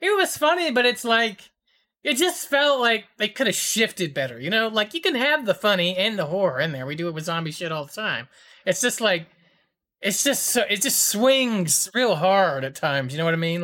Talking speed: 240 wpm